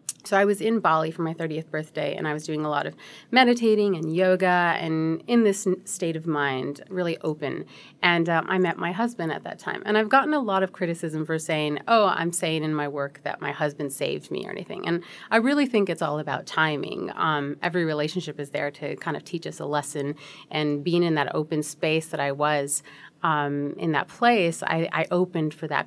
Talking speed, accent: 225 wpm, American